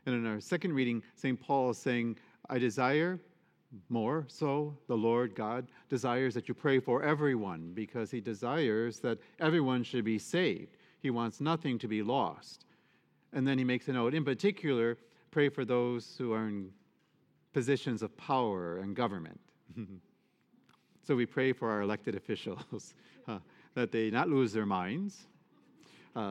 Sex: male